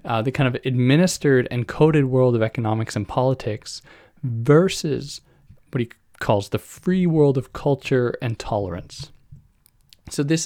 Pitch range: 110-145 Hz